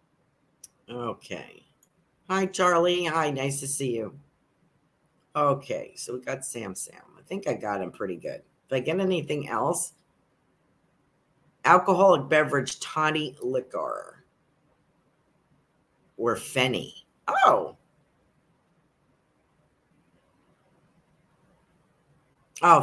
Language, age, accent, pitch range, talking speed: English, 50-69, American, 125-160 Hz, 90 wpm